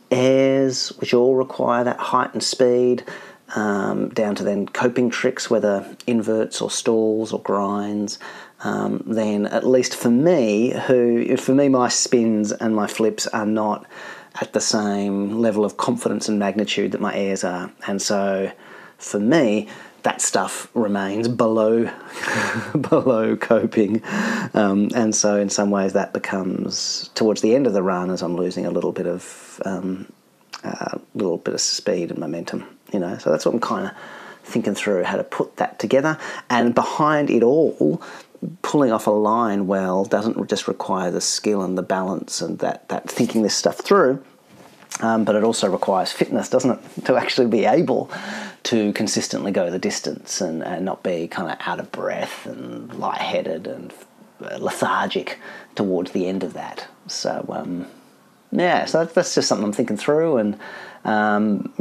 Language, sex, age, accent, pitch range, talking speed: English, male, 40-59, Australian, 100-120 Hz, 170 wpm